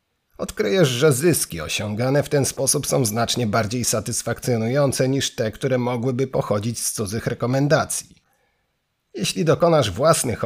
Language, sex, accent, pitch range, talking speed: Polish, male, native, 115-140 Hz, 125 wpm